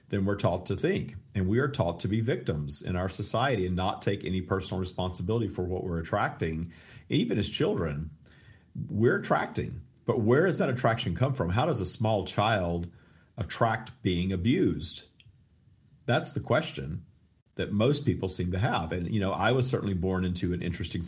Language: English